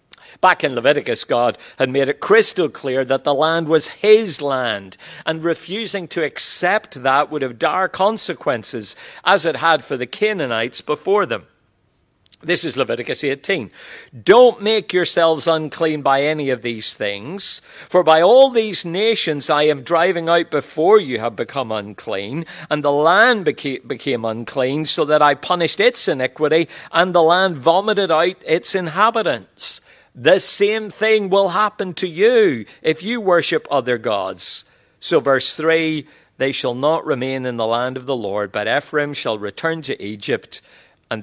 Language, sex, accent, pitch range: English, male, British, 130-185 Hz